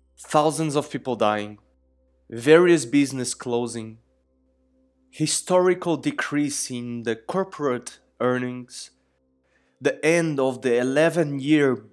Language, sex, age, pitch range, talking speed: English, male, 20-39, 110-165 Hz, 90 wpm